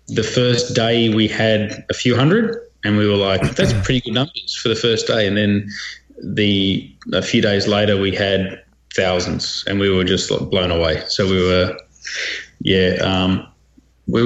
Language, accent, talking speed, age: English, Australian, 180 wpm, 20-39